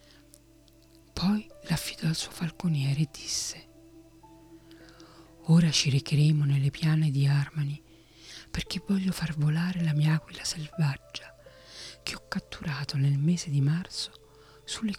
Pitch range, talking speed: 140-165 Hz, 120 wpm